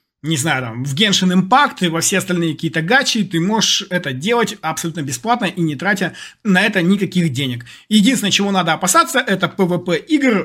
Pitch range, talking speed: 165-225 Hz, 180 wpm